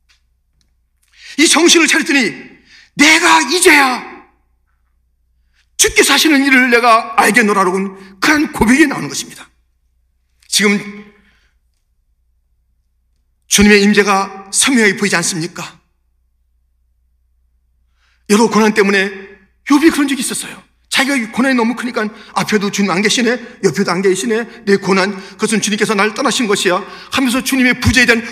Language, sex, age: Korean, male, 40-59